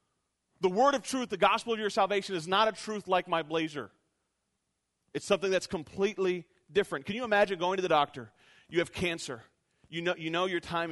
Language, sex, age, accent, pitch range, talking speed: English, male, 40-59, American, 125-185 Hz, 205 wpm